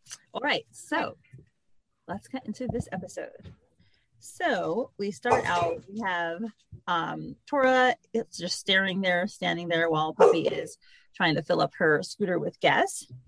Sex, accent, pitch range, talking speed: female, American, 170-230 Hz, 150 wpm